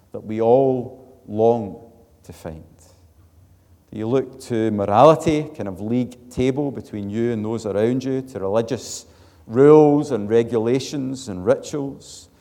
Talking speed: 135 wpm